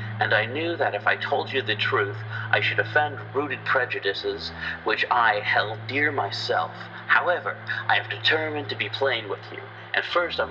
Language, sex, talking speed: English, male, 185 wpm